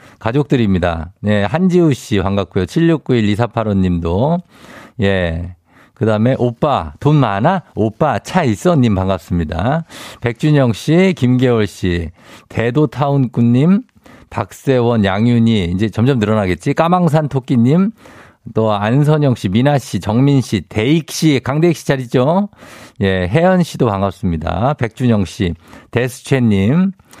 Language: Korean